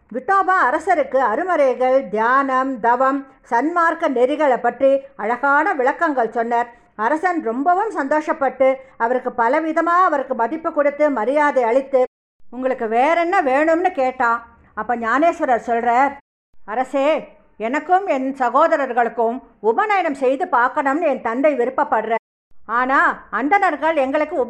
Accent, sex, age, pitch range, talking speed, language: Indian, female, 50-69, 240-315 Hz, 105 wpm, English